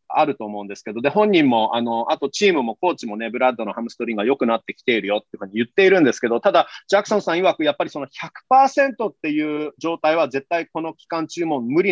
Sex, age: male, 30-49